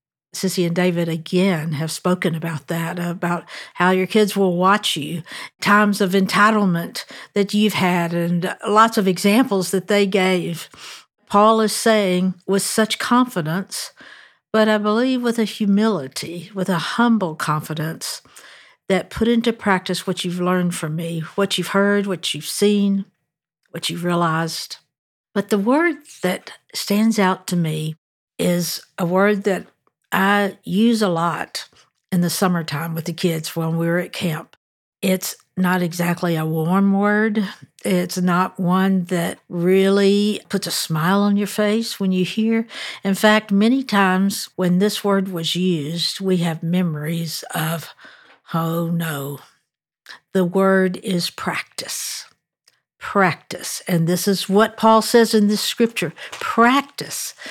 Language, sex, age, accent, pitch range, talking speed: English, female, 60-79, American, 170-210 Hz, 145 wpm